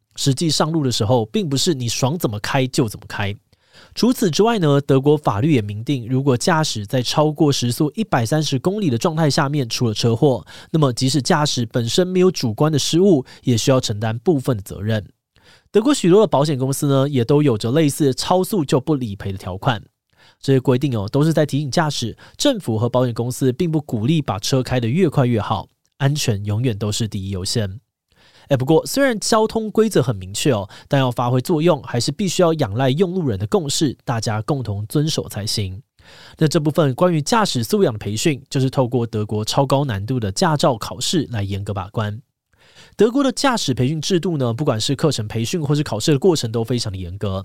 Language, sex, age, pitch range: Chinese, male, 20-39, 115-155 Hz